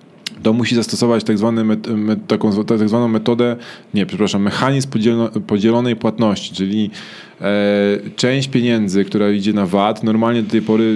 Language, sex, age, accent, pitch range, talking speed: Polish, male, 20-39, native, 100-120 Hz, 120 wpm